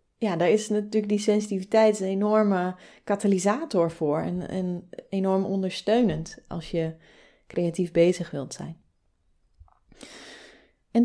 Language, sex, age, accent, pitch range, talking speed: Dutch, female, 30-49, Dutch, 175-210 Hz, 115 wpm